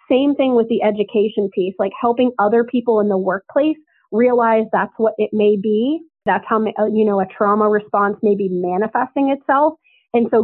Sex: female